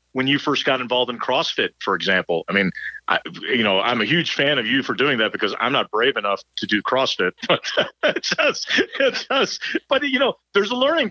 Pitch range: 135-200 Hz